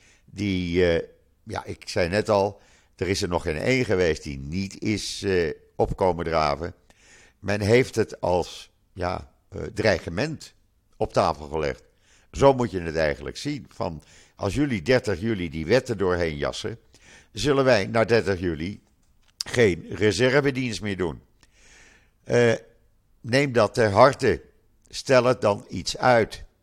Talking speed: 145 wpm